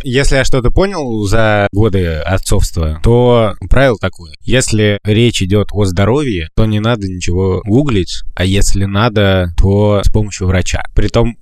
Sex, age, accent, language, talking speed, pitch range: male, 20-39, native, Russian, 145 wpm, 95-115 Hz